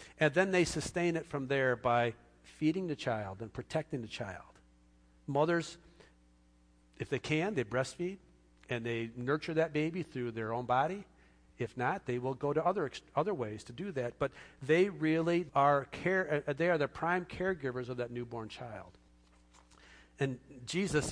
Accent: American